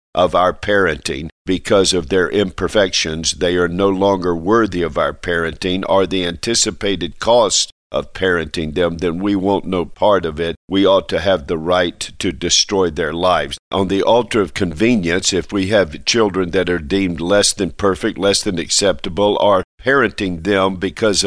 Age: 50-69